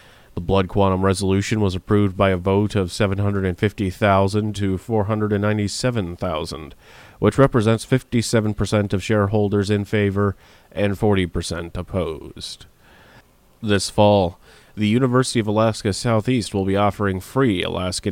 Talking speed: 115 wpm